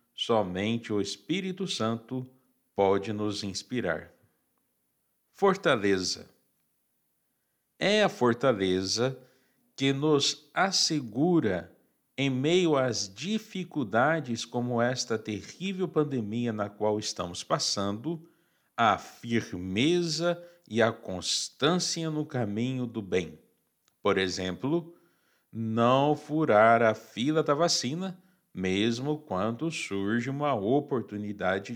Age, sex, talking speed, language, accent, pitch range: 60-79, male, 90 wpm, Portuguese, Brazilian, 105-155 Hz